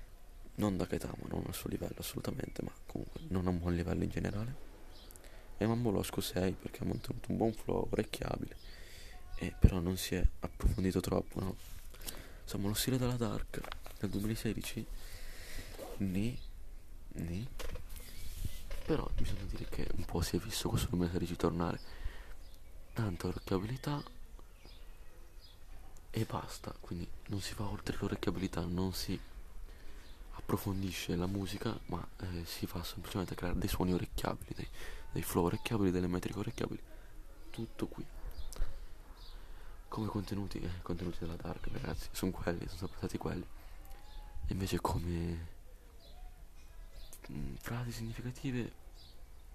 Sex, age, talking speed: male, 20-39, 130 wpm